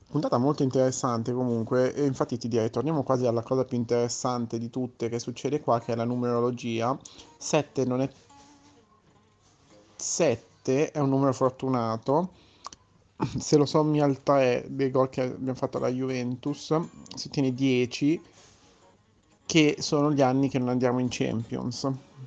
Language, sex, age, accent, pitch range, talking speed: Italian, male, 30-49, native, 115-130 Hz, 150 wpm